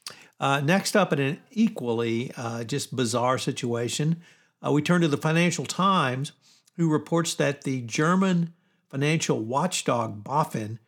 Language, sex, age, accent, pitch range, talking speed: English, male, 60-79, American, 130-165 Hz, 140 wpm